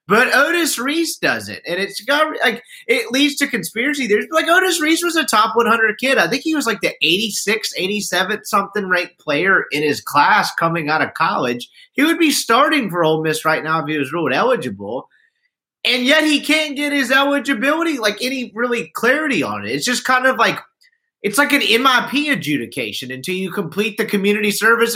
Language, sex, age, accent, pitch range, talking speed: English, male, 30-49, American, 170-260 Hz, 185 wpm